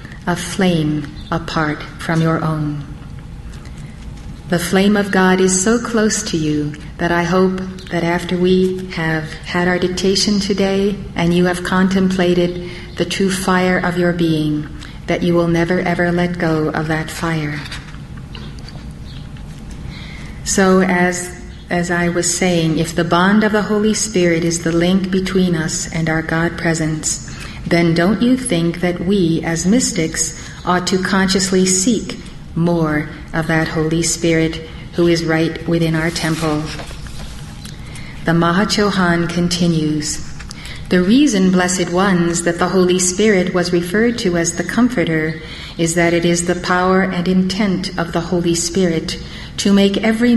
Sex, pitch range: female, 165-185 Hz